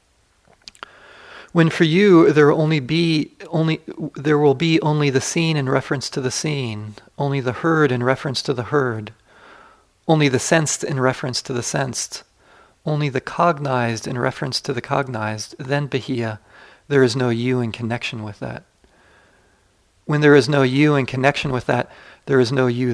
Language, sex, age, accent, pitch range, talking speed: English, male, 40-59, American, 110-150 Hz, 170 wpm